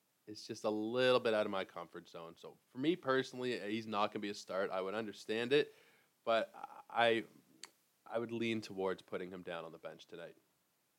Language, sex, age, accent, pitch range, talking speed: English, male, 20-39, American, 100-120 Hz, 205 wpm